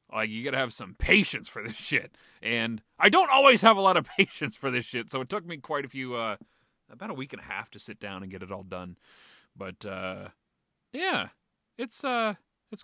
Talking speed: 230 wpm